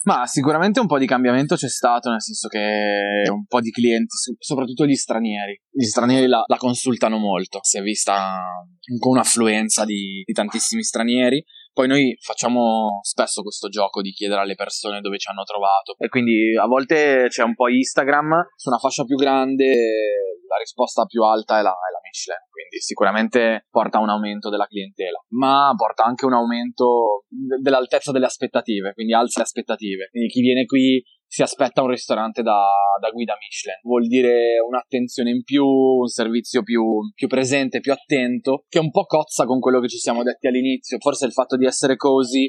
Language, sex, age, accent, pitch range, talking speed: Italian, male, 20-39, native, 110-135 Hz, 185 wpm